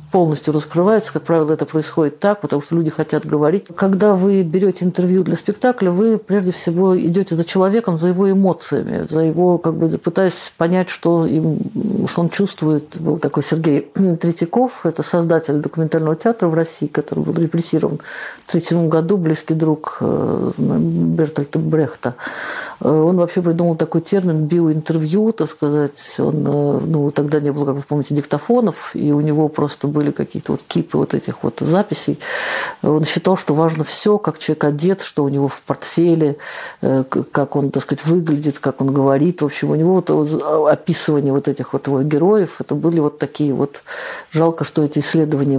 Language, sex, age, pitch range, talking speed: Russian, female, 50-69, 150-180 Hz, 170 wpm